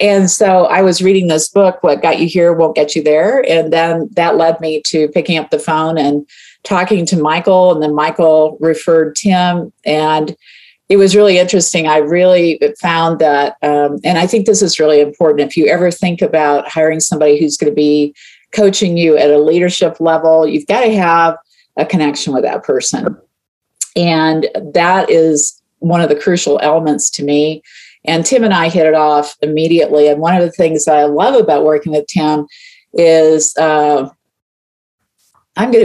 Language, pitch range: English, 155-185 Hz